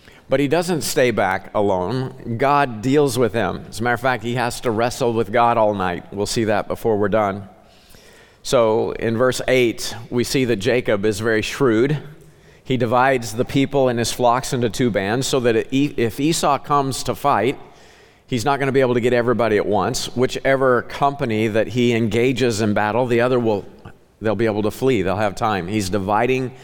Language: English